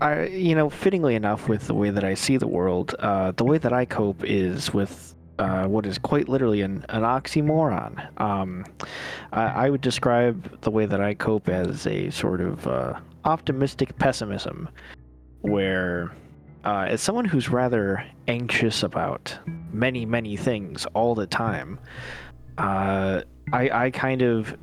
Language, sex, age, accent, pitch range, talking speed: English, male, 20-39, American, 95-125 Hz, 155 wpm